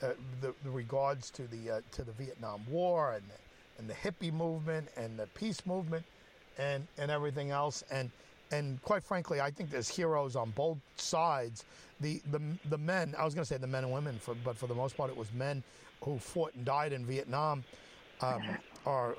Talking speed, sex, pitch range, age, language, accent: 205 wpm, male, 120-155 Hz, 50-69, English, American